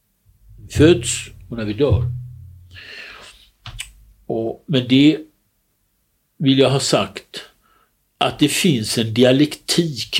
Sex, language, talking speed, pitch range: male, Swedish, 90 wpm, 100-130 Hz